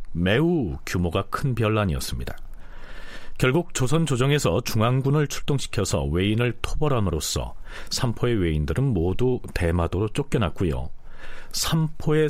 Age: 40-59